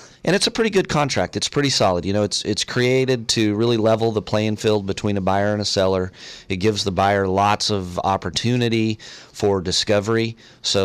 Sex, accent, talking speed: male, American, 200 wpm